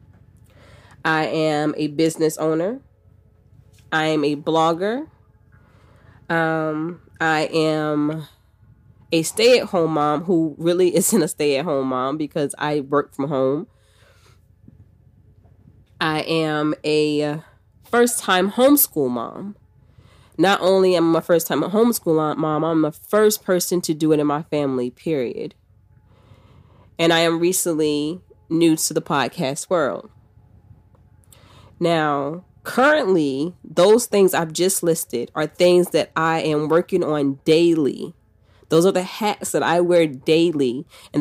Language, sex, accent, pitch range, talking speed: English, female, American, 115-170 Hz, 125 wpm